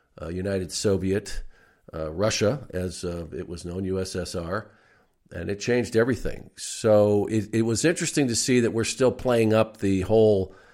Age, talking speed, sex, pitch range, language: 50-69, 160 wpm, male, 90-110 Hz, English